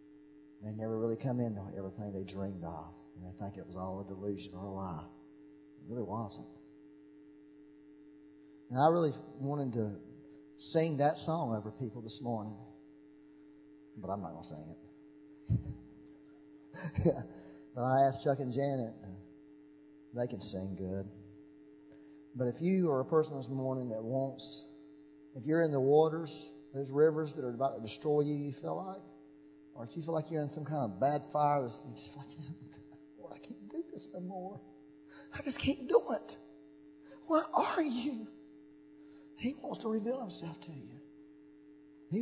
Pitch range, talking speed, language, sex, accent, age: 95-150 Hz, 165 wpm, English, male, American, 40-59